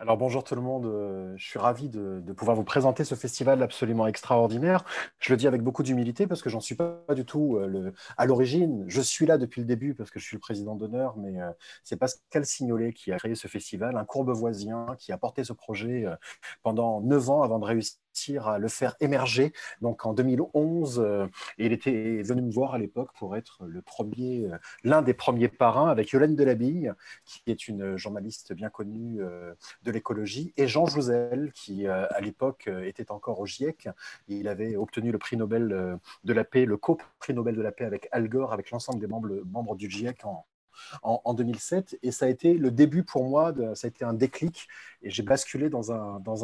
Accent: French